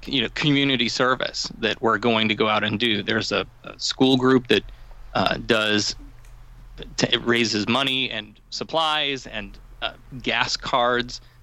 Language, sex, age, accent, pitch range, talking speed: English, male, 30-49, American, 120-140 Hz, 160 wpm